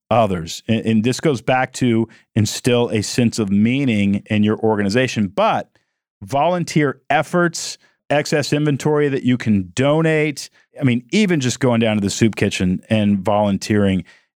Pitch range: 100-125 Hz